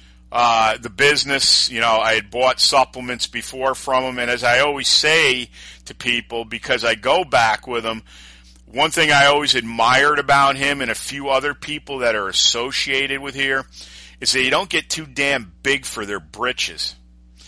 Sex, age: male, 50-69